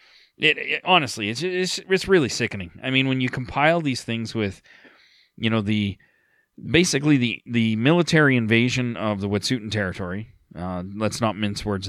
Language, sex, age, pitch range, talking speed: English, male, 30-49, 100-125 Hz, 165 wpm